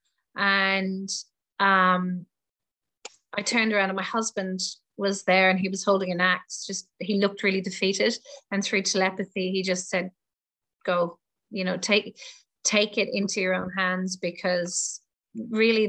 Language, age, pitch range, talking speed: English, 30-49, 185-215 Hz, 145 wpm